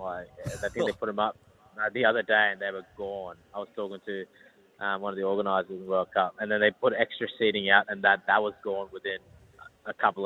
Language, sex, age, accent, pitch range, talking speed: English, male, 20-39, Australian, 100-120 Hz, 240 wpm